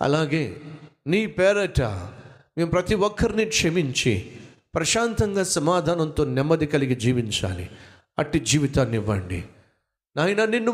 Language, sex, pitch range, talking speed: Telugu, male, 115-180 Hz, 95 wpm